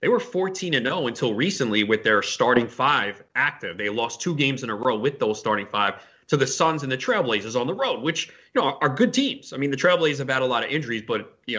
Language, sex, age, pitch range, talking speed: English, male, 30-49, 110-140 Hz, 260 wpm